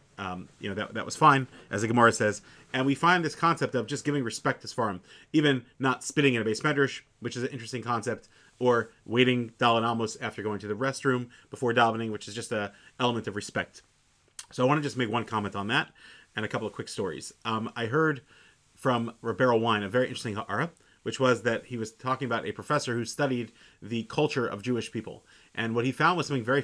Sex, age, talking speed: male, 30-49, 225 wpm